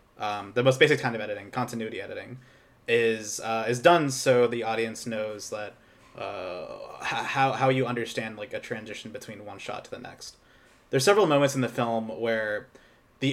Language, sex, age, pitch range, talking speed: English, male, 20-39, 110-130 Hz, 180 wpm